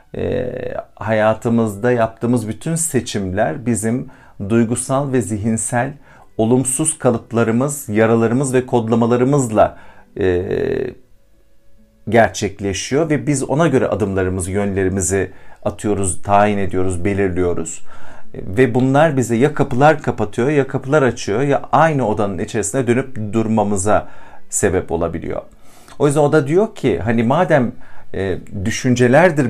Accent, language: native, Turkish